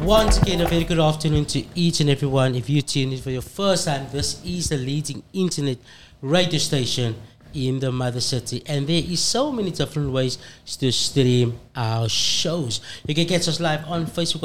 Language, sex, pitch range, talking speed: English, male, 120-155 Hz, 195 wpm